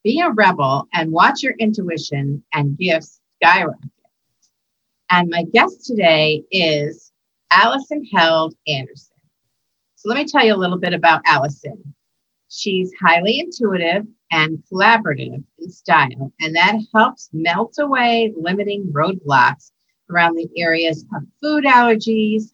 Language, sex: English, female